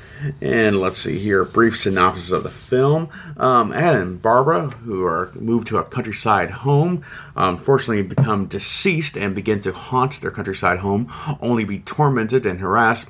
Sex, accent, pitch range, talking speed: male, American, 100-125 Hz, 165 wpm